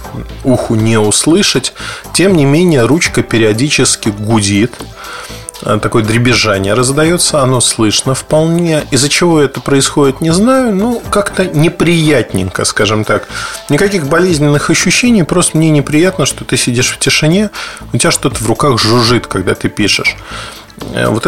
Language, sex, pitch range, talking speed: Russian, male, 110-145 Hz, 135 wpm